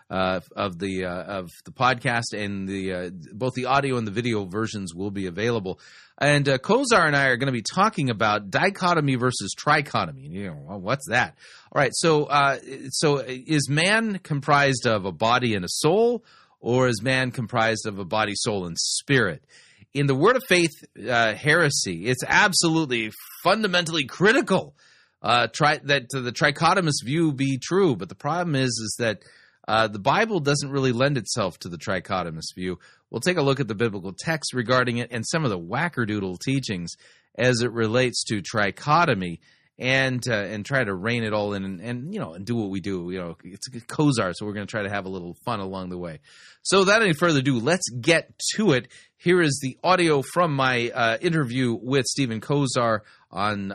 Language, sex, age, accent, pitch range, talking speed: English, male, 30-49, American, 105-145 Hz, 200 wpm